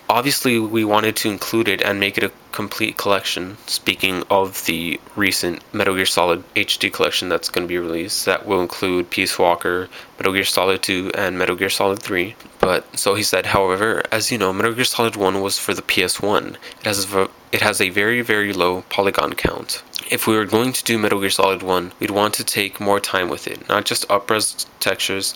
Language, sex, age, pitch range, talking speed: English, male, 20-39, 95-110 Hz, 205 wpm